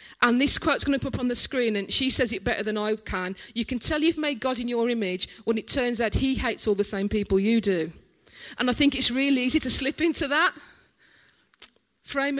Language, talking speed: English, 240 wpm